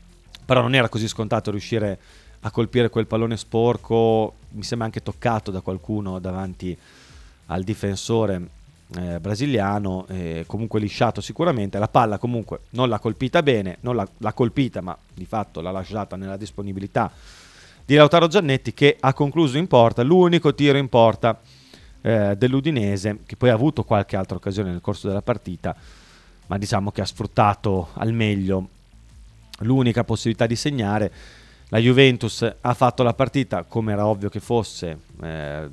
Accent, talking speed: native, 155 wpm